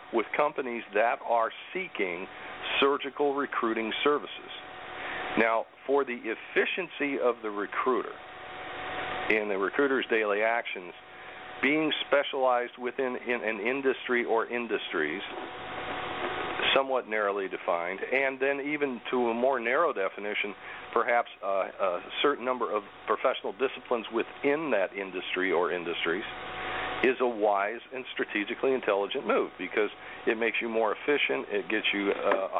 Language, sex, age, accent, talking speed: English, male, 50-69, American, 125 wpm